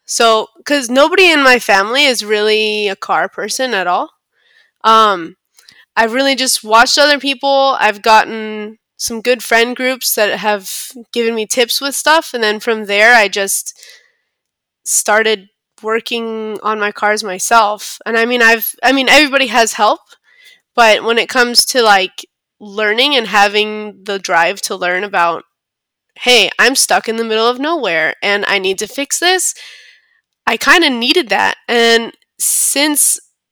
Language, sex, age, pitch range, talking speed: English, female, 20-39, 210-260 Hz, 160 wpm